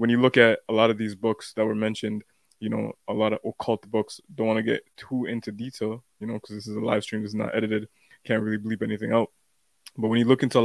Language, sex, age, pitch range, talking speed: English, male, 20-39, 110-120 Hz, 275 wpm